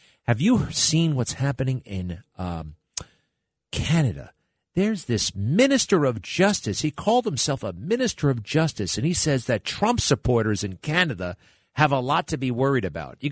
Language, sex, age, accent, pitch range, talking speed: English, male, 50-69, American, 110-155 Hz, 160 wpm